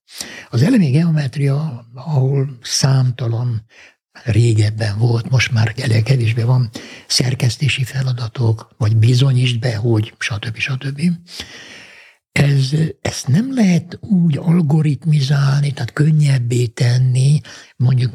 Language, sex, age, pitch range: Hungarian, male, 60-79, 120-155 Hz